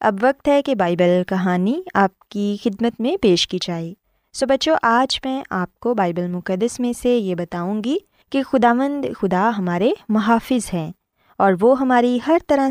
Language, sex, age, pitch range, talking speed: Urdu, female, 20-39, 190-270 Hz, 175 wpm